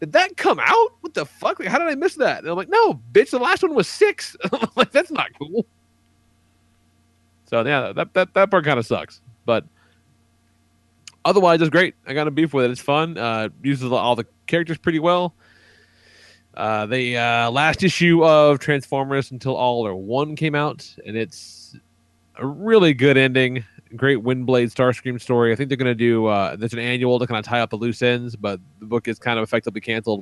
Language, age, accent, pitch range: English, 30-49, American, 105-140 Hz